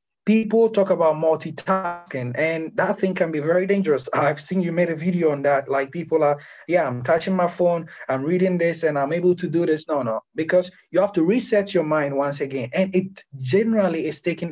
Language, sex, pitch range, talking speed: English, male, 150-190 Hz, 215 wpm